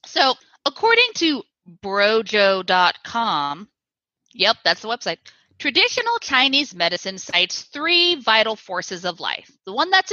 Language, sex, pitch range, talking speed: English, female, 190-290 Hz, 120 wpm